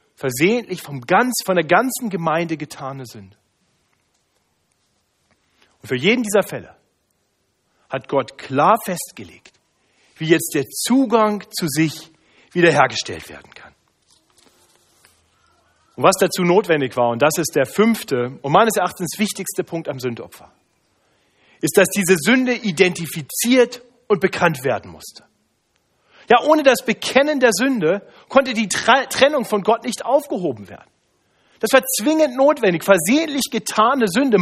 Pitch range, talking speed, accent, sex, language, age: 170-245 Hz, 130 wpm, German, male, German, 40-59